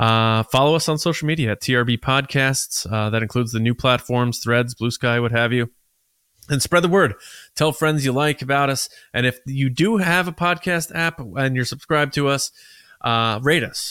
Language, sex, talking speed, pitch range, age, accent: English, male, 205 wpm, 115-145 Hz, 20-39, American